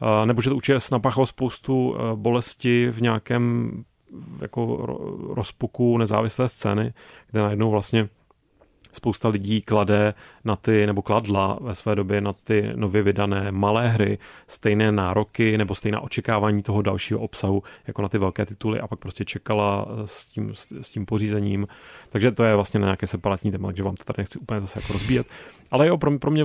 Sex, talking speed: male, 175 wpm